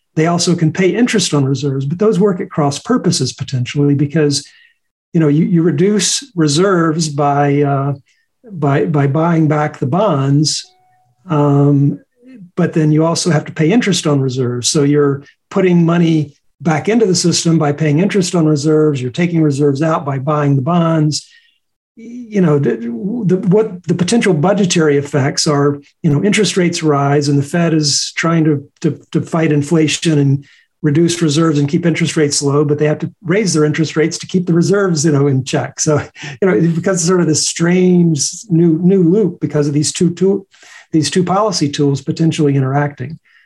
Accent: American